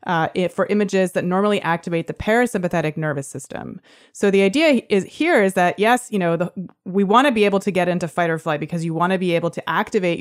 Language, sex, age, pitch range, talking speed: English, female, 30-49, 165-205 Hz, 240 wpm